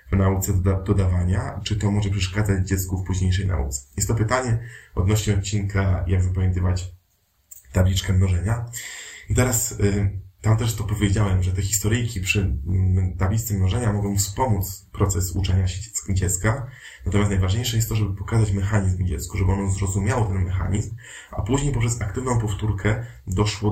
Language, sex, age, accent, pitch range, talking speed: Polish, male, 20-39, native, 95-105 Hz, 140 wpm